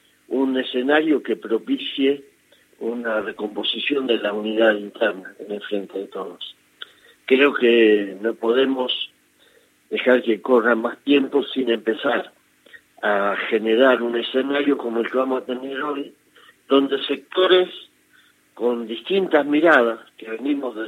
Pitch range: 110-140 Hz